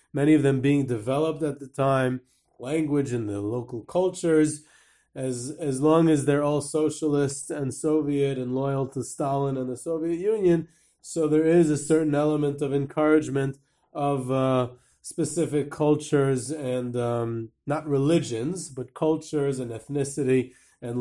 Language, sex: English, male